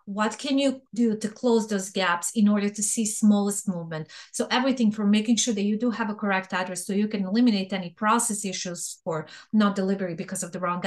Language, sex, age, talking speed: English, female, 30-49, 220 wpm